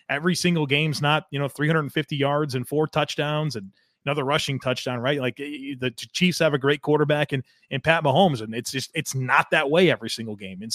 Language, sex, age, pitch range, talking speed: English, male, 30-49, 135-170 Hz, 210 wpm